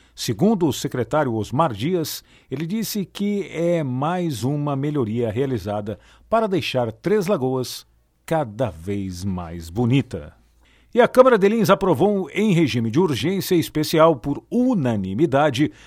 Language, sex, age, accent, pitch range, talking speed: Portuguese, male, 50-69, Brazilian, 120-180 Hz, 130 wpm